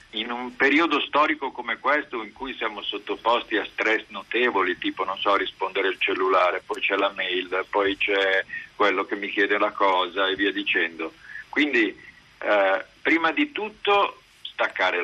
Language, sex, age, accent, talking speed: Italian, male, 50-69, native, 160 wpm